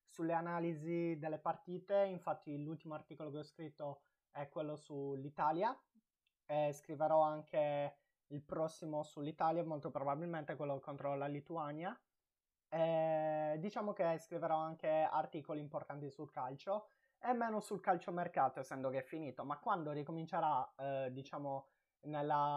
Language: Italian